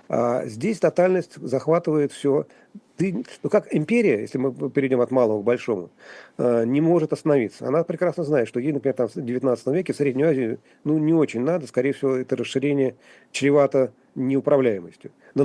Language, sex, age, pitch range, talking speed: Russian, male, 40-59, 125-155 Hz, 165 wpm